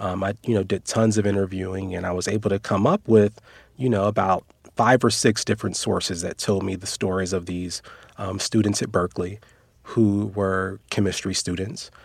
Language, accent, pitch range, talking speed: English, American, 95-110 Hz, 195 wpm